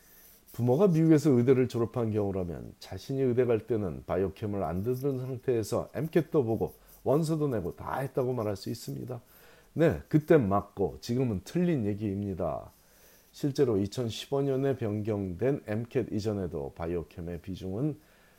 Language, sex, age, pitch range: Korean, male, 40-59, 95-130 Hz